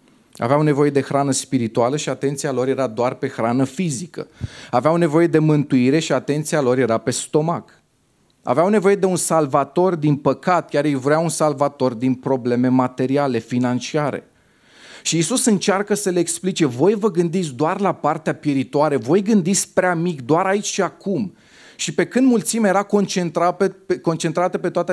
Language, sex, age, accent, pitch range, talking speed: Romanian, male, 30-49, native, 120-165 Hz, 165 wpm